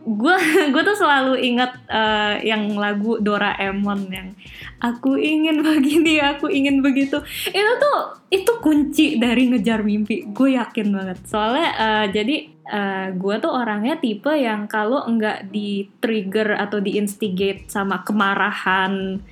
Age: 20-39